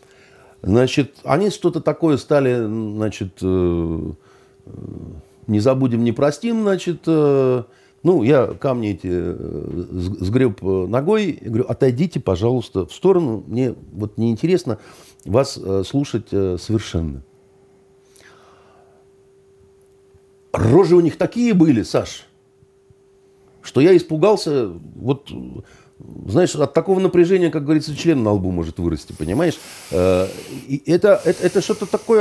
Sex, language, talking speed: male, Russian, 100 wpm